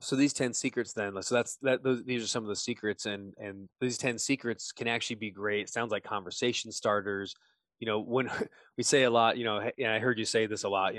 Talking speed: 255 wpm